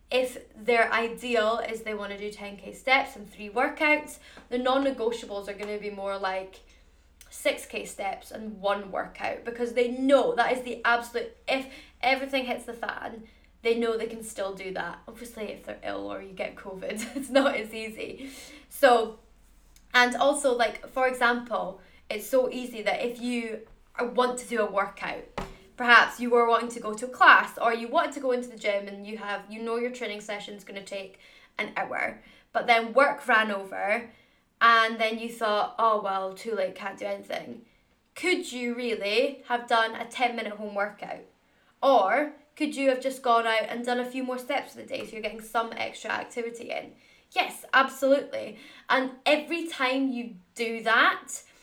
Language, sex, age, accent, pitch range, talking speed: English, female, 20-39, British, 210-255 Hz, 185 wpm